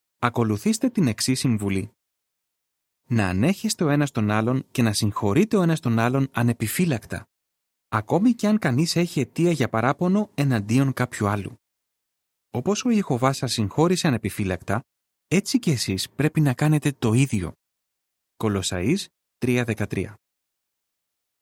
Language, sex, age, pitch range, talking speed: Greek, male, 30-49, 110-145 Hz, 125 wpm